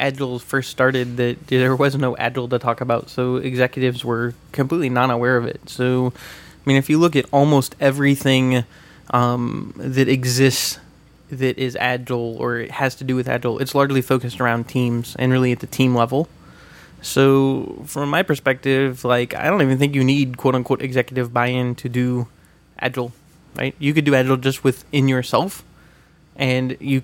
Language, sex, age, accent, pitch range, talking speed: English, male, 20-39, American, 125-140 Hz, 175 wpm